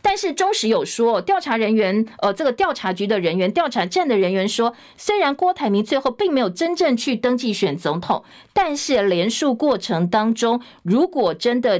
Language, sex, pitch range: Chinese, female, 190-265 Hz